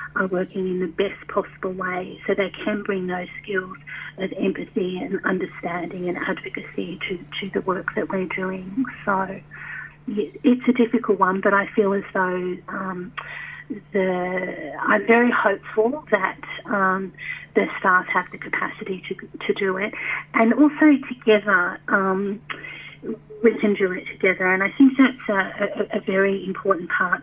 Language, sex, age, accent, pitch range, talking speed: English, female, 30-49, Australian, 185-220 Hz, 155 wpm